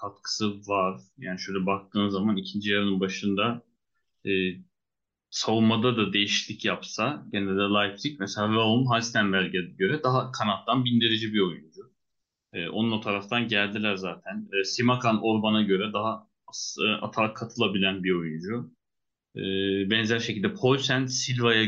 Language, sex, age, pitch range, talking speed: Turkish, male, 30-49, 100-125 Hz, 130 wpm